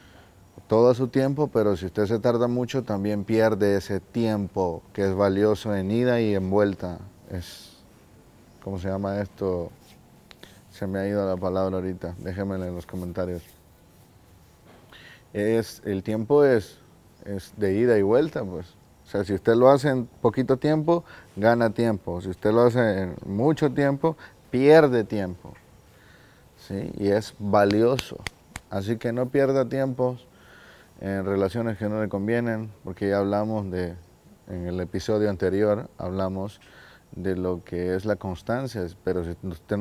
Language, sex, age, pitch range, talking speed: Spanish, male, 30-49, 95-120 Hz, 150 wpm